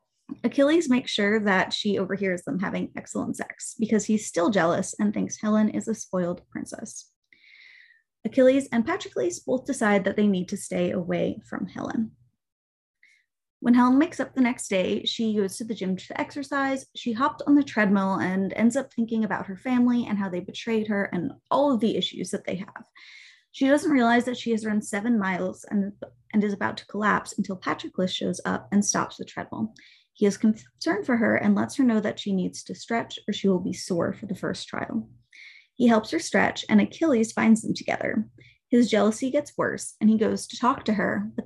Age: 20-39